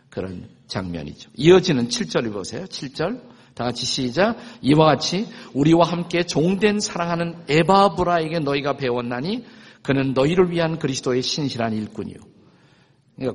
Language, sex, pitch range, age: Korean, male, 115-160 Hz, 50-69